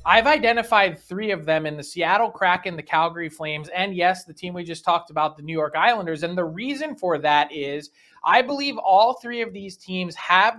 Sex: male